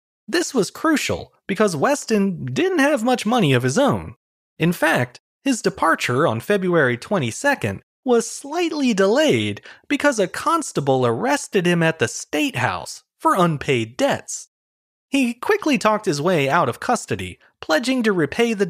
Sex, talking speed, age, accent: male, 150 wpm, 30-49, American